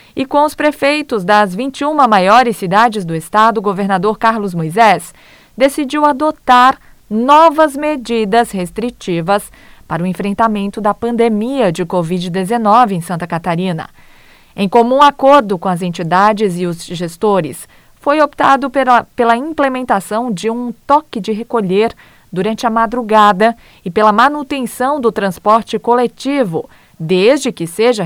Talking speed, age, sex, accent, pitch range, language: 125 wpm, 20-39, female, Brazilian, 195-260 Hz, Portuguese